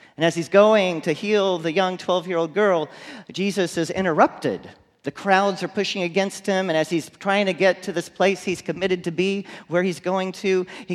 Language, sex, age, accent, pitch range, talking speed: English, male, 40-59, American, 155-200 Hz, 205 wpm